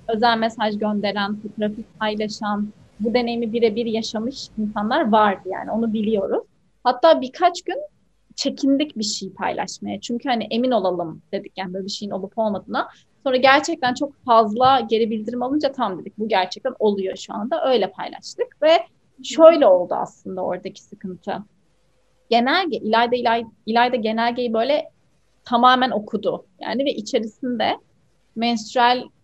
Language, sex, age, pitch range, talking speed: Turkish, female, 30-49, 215-260 Hz, 135 wpm